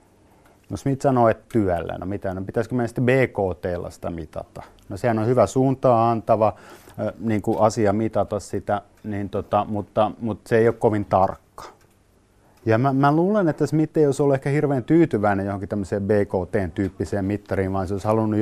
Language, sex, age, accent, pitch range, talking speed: Finnish, male, 30-49, native, 100-125 Hz, 165 wpm